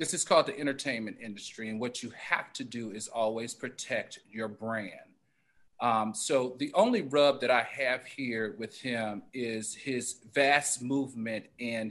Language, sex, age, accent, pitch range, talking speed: English, male, 40-59, American, 115-140 Hz, 165 wpm